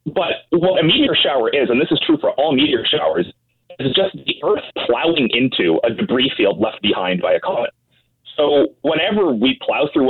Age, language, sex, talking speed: 30-49, English, male, 195 wpm